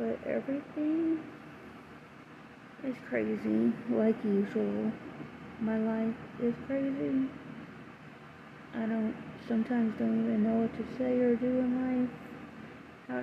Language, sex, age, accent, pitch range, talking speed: English, female, 20-39, American, 215-250 Hz, 110 wpm